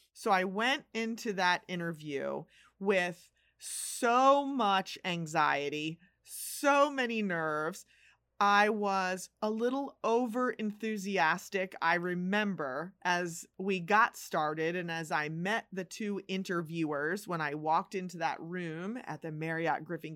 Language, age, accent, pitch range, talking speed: English, 30-49, American, 165-205 Hz, 120 wpm